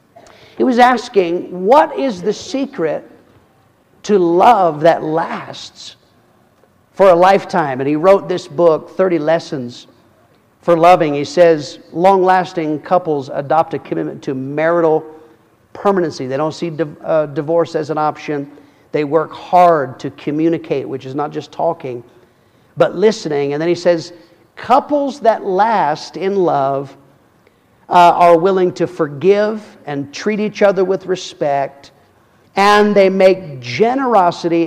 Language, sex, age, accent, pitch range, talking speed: English, male, 50-69, American, 150-200 Hz, 135 wpm